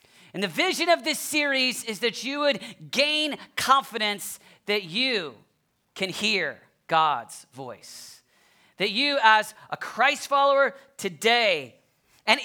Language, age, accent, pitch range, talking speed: English, 40-59, American, 210-285 Hz, 125 wpm